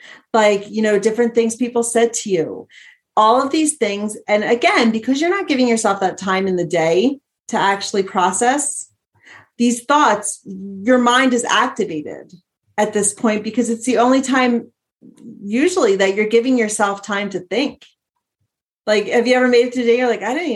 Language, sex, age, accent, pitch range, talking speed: English, female, 30-49, American, 205-265 Hz, 180 wpm